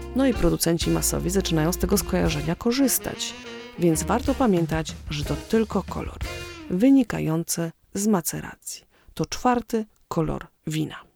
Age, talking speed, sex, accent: 30-49, 125 wpm, female, native